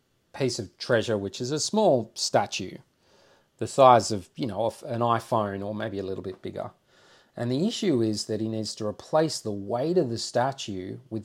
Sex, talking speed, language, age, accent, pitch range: male, 195 wpm, English, 30-49, Australian, 105-120 Hz